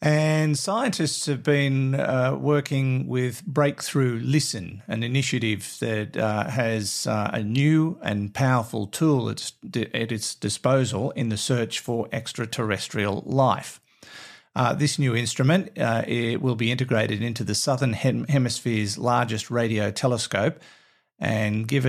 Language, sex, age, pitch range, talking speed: English, male, 50-69, 110-130 Hz, 130 wpm